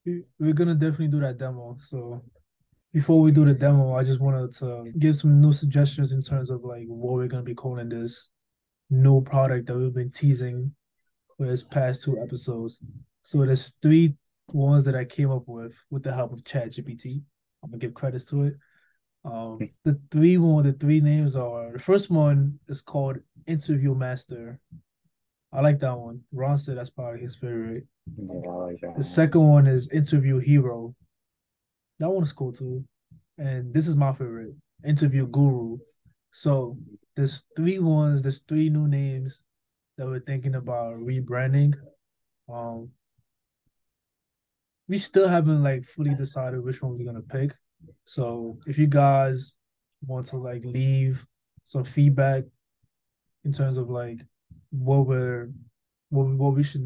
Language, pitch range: English, 125-145 Hz